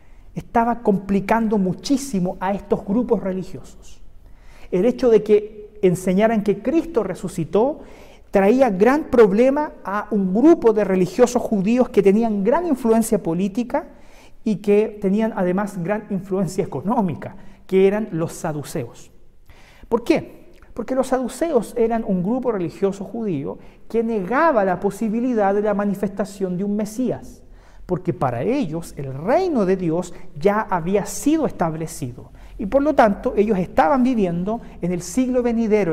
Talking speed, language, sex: 135 wpm, Spanish, male